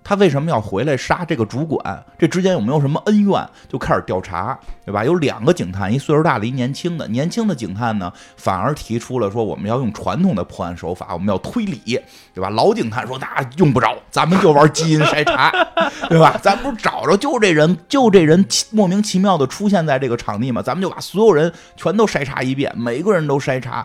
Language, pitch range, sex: Chinese, 110-170 Hz, male